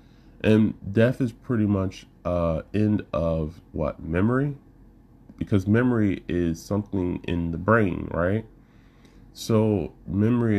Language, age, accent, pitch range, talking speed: English, 30-49, American, 80-100 Hz, 115 wpm